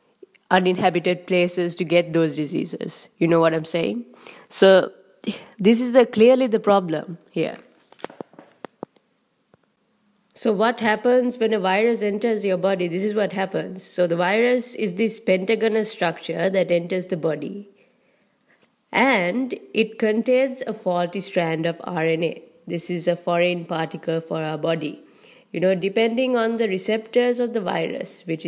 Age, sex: 20-39, female